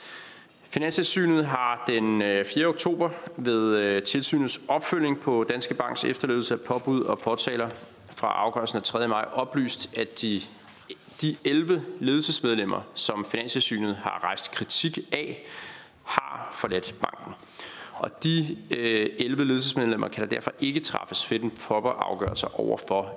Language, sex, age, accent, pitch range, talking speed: Danish, male, 30-49, native, 105-135 Hz, 130 wpm